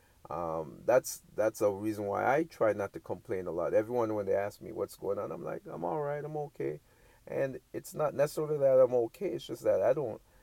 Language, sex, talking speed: English, male, 230 wpm